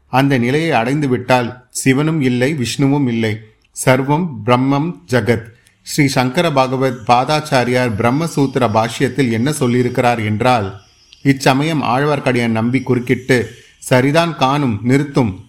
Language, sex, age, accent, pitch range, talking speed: Tamil, male, 30-49, native, 120-140 Hz, 105 wpm